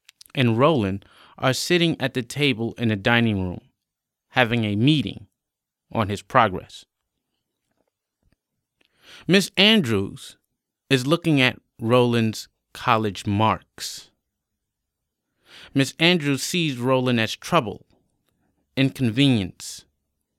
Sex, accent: male, American